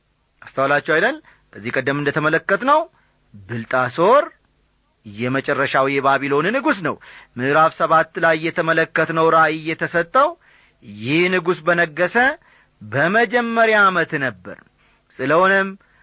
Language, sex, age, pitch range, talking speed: Amharic, male, 40-59, 145-220 Hz, 85 wpm